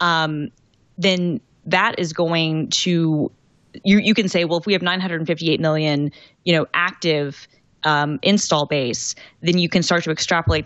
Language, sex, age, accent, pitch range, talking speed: English, female, 20-39, American, 145-165 Hz, 160 wpm